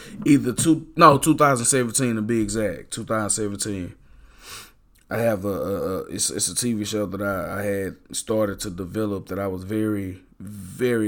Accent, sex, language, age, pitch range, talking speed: American, male, English, 20-39, 95-110 Hz, 160 wpm